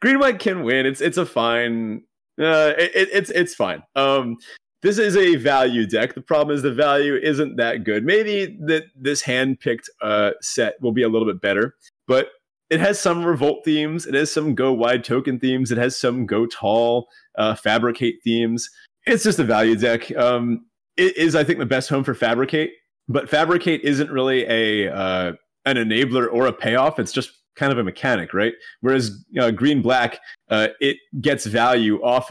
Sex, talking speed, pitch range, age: male, 190 wpm, 115-150 Hz, 30-49